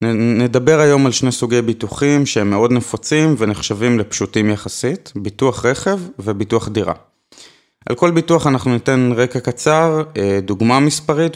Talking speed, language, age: 130 wpm, Hebrew, 20-39